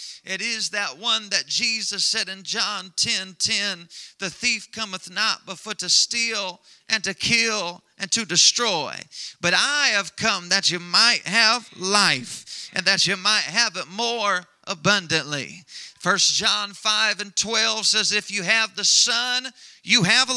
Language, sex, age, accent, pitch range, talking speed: English, male, 30-49, American, 190-230 Hz, 160 wpm